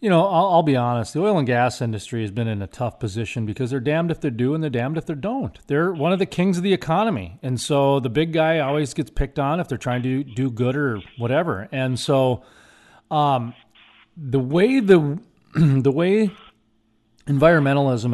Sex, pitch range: male, 120-150 Hz